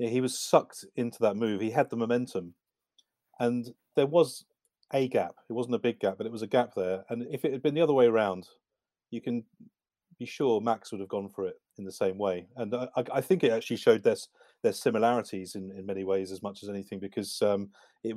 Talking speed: 230 wpm